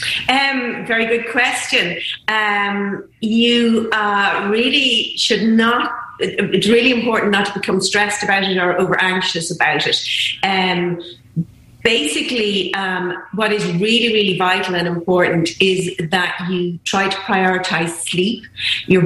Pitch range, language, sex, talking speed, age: 180-210 Hz, English, female, 130 wpm, 30-49